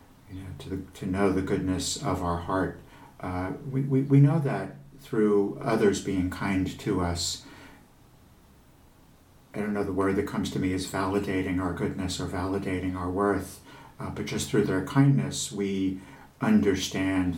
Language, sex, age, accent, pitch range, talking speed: English, male, 60-79, American, 90-105 Hz, 160 wpm